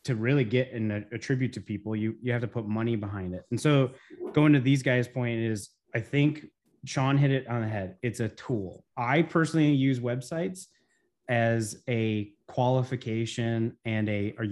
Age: 30-49